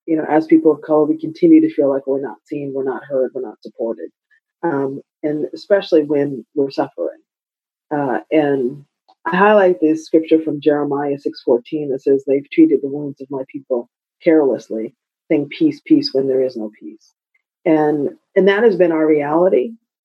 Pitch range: 145-180 Hz